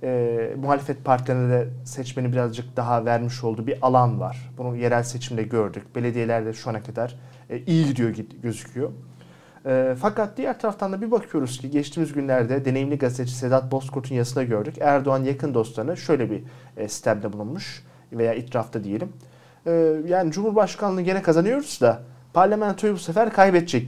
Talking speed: 155 wpm